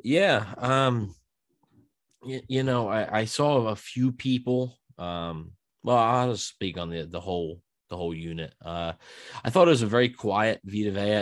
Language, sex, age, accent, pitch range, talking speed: English, male, 20-39, American, 90-115 Hz, 170 wpm